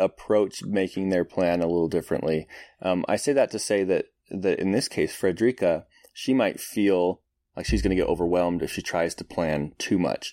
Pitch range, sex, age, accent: 90-110 Hz, male, 20-39, American